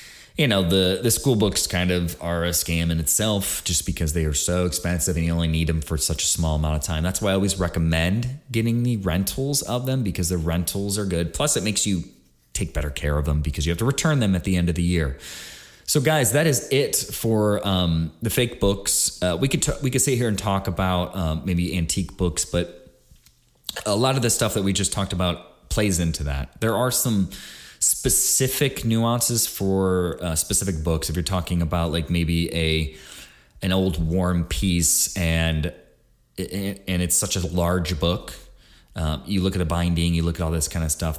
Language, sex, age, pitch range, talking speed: English, male, 20-39, 80-100 Hz, 210 wpm